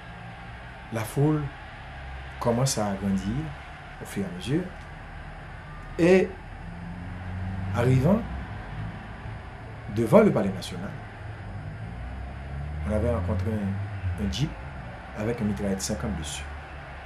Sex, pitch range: male, 100-150 Hz